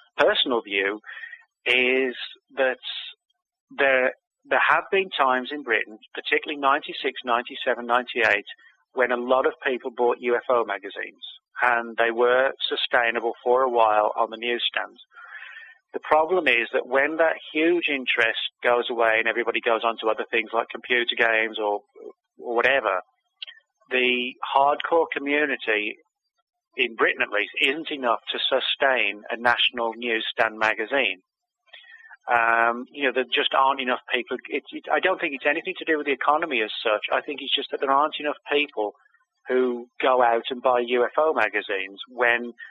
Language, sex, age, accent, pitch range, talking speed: English, male, 30-49, British, 115-155 Hz, 150 wpm